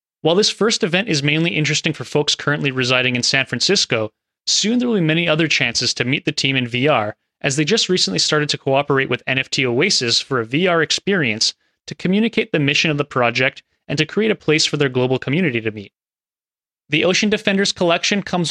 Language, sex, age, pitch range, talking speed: English, male, 30-49, 130-170 Hz, 210 wpm